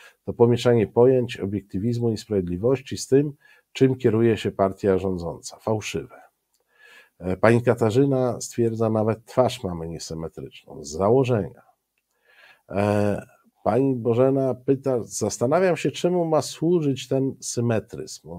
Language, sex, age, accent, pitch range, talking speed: Polish, male, 50-69, native, 95-125 Hz, 110 wpm